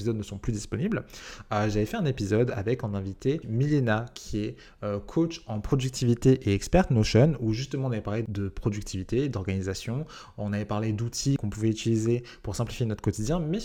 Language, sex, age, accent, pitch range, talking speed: French, male, 20-39, French, 100-125 Hz, 185 wpm